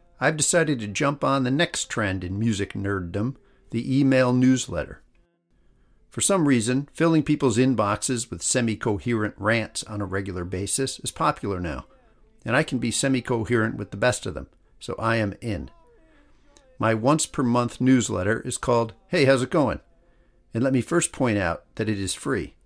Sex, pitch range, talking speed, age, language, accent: male, 105-130 Hz, 165 wpm, 50-69, English, American